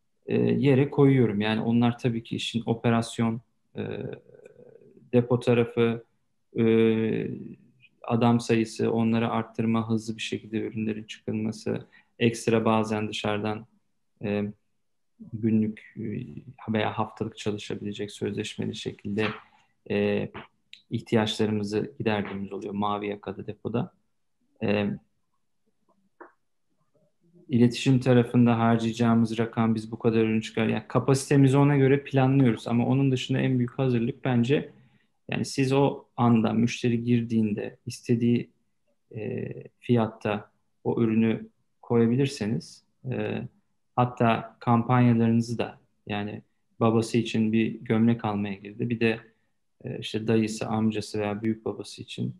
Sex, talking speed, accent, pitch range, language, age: male, 100 wpm, native, 110-120 Hz, Turkish, 40-59